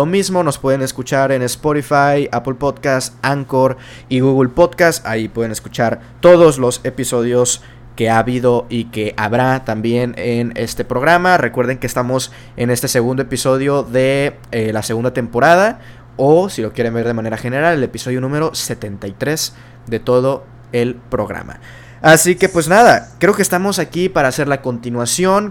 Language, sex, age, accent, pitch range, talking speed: Spanish, male, 20-39, Mexican, 120-140 Hz, 160 wpm